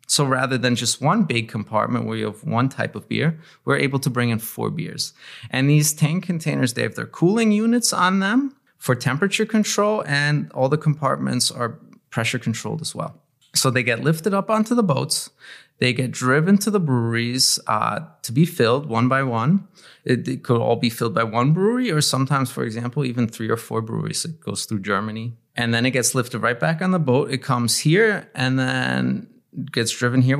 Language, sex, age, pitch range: German, male, 20-39, 115-155 Hz